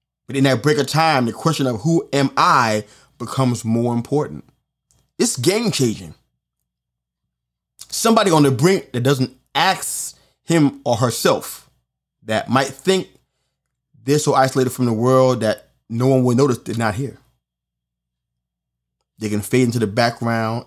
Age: 30-49